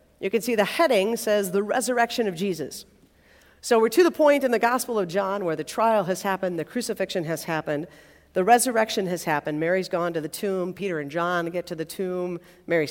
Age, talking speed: 50-69, 215 wpm